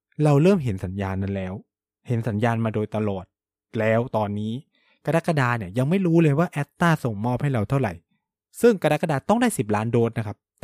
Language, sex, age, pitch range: Thai, male, 20-39, 105-145 Hz